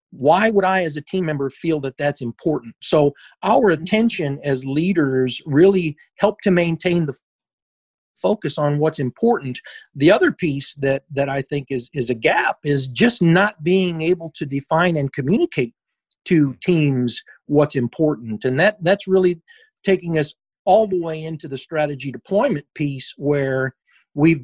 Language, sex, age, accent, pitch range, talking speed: English, male, 40-59, American, 135-180 Hz, 160 wpm